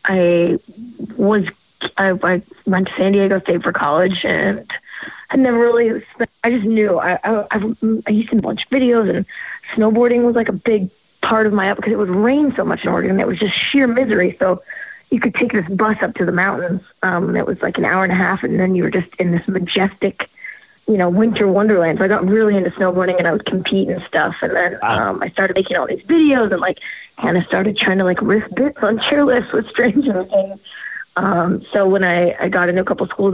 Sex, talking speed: female, 230 wpm